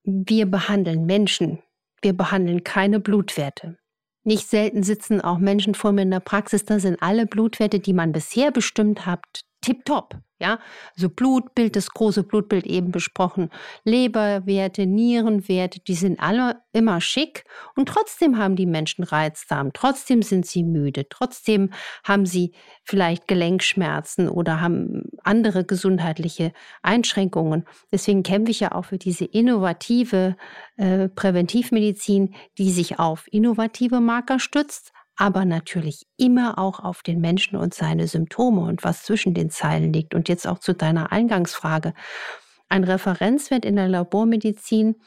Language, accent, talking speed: German, German, 140 wpm